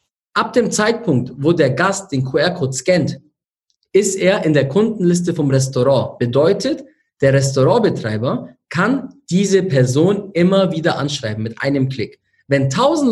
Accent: German